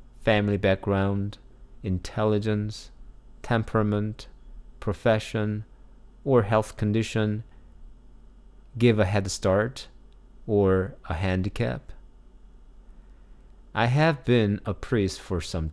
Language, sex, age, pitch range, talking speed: English, male, 30-49, 90-120 Hz, 85 wpm